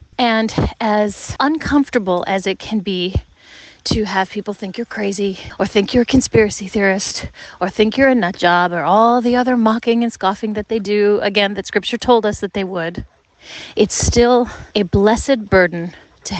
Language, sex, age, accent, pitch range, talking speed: English, female, 30-49, American, 195-245 Hz, 180 wpm